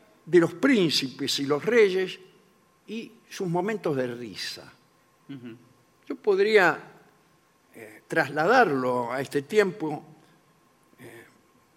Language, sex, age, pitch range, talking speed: Spanish, male, 60-79, 135-205 Hz, 95 wpm